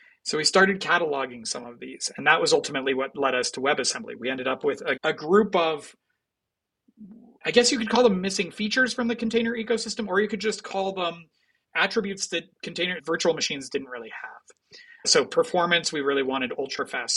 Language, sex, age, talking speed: English, male, 30-49, 200 wpm